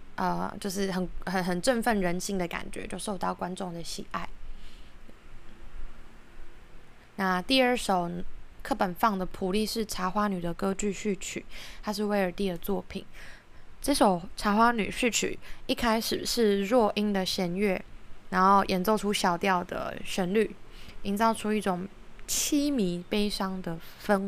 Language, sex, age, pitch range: Chinese, female, 20-39, 185-215 Hz